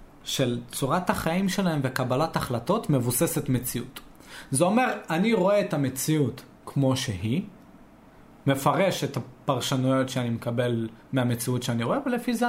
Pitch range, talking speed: 125-185 Hz, 125 wpm